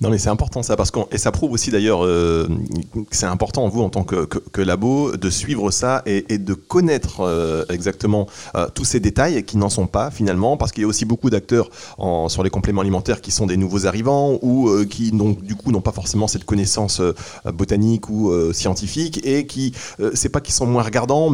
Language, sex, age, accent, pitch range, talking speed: French, male, 30-49, French, 95-125 Hz, 235 wpm